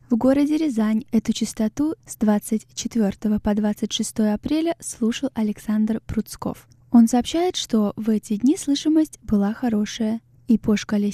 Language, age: Russian, 10-29